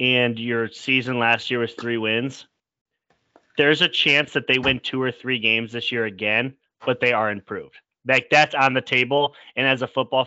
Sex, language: male, English